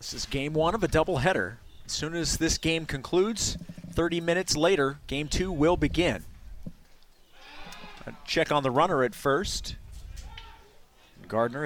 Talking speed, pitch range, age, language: 140 wpm, 125-160 Hz, 30-49, English